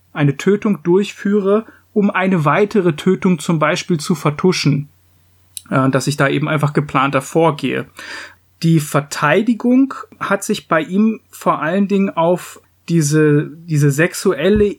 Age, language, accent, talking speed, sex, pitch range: 30-49, German, German, 125 wpm, male, 150-195 Hz